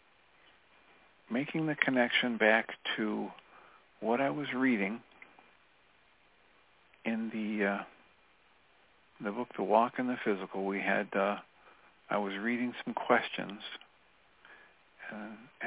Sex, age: male, 50-69